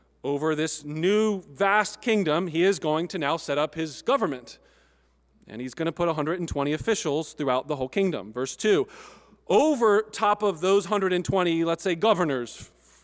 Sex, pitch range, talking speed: male, 145-195 Hz, 160 wpm